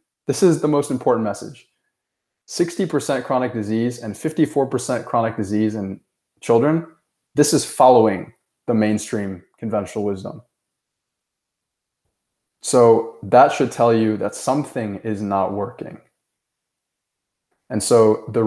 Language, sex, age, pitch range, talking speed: English, male, 20-39, 100-125 Hz, 115 wpm